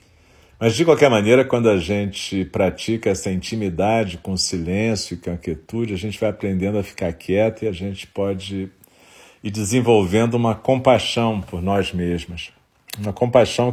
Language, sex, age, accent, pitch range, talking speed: Portuguese, male, 50-69, Brazilian, 95-110 Hz, 155 wpm